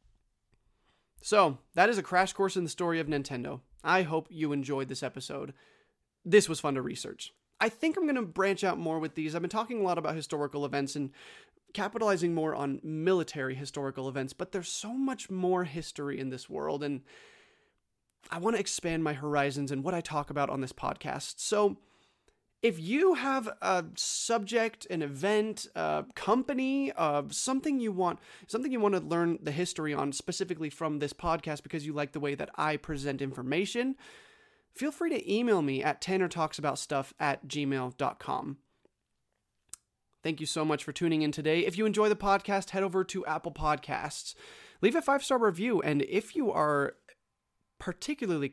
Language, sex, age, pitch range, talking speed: English, male, 30-49, 145-210 Hz, 175 wpm